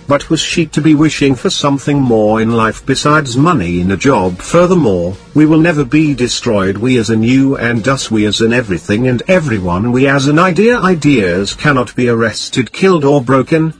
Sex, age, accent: male, 50-69, British